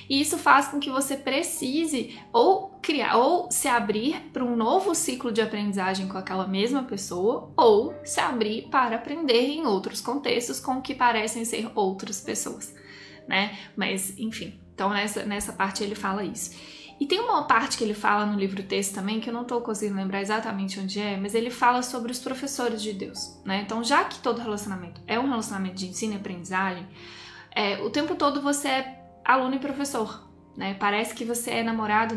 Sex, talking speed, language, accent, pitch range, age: female, 190 wpm, Portuguese, Brazilian, 200-250 Hz, 10-29